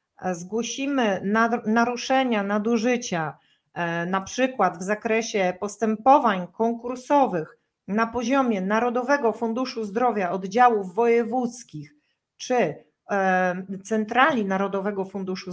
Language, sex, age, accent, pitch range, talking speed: Polish, female, 40-59, native, 220-260 Hz, 75 wpm